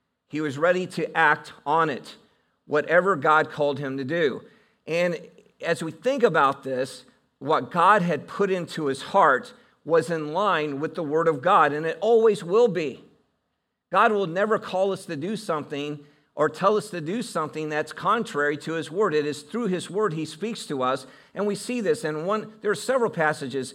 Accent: American